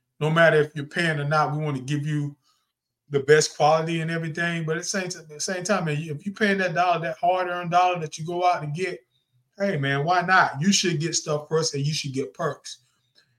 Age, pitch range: 30-49, 130-165 Hz